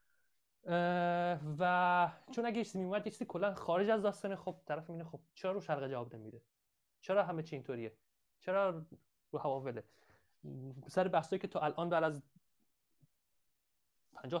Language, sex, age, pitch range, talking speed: Persian, male, 30-49, 140-175 Hz, 145 wpm